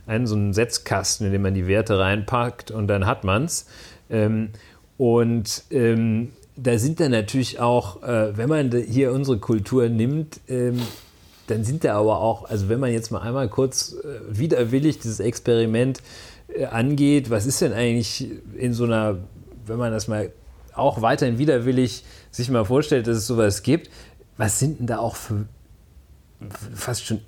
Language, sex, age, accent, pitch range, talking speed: German, male, 40-59, German, 110-135 Hz, 160 wpm